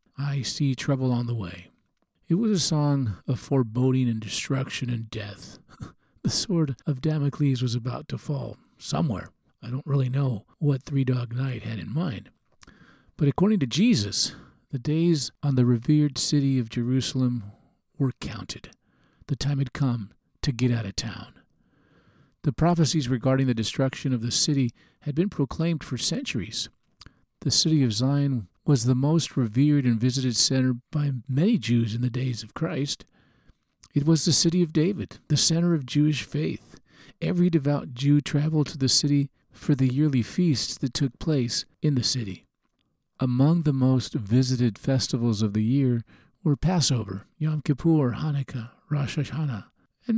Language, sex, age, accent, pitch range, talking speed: English, male, 50-69, American, 125-150 Hz, 165 wpm